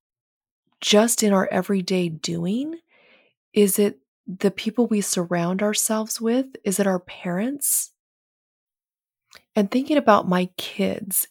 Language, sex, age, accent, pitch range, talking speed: English, female, 30-49, American, 185-230 Hz, 115 wpm